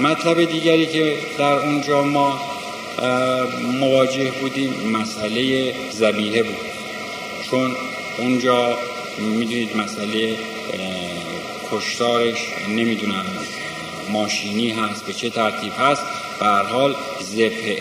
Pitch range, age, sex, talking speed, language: 105-140 Hz, 50-69, male, 90 wpm, Persian